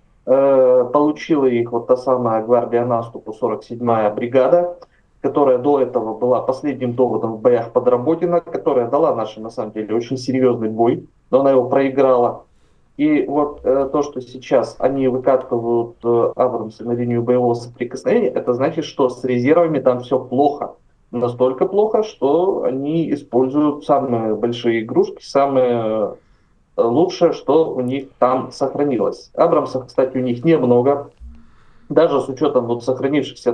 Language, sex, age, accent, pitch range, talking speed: Russian, male, 20-39, native, 120-145 Hz, 140 wpm